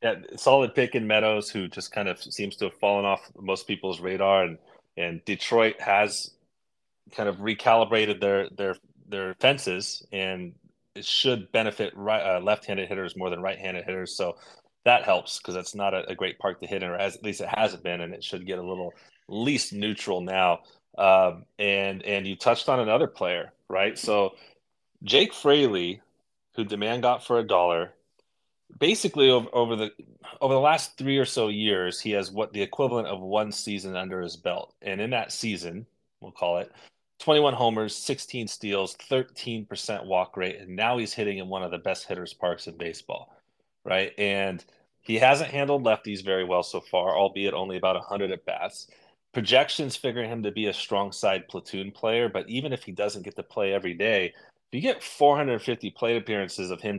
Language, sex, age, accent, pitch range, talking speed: English, male, 30-49, American, 95-115 Hz, 185 wpm